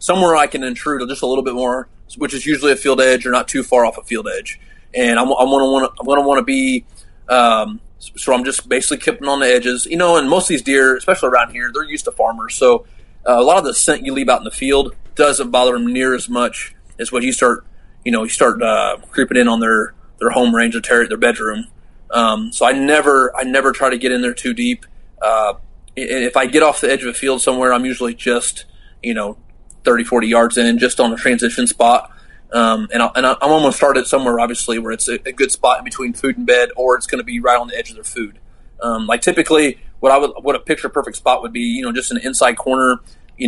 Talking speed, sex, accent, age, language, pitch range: 255 wpm, male, American, 30-49, English, 120-150 Hz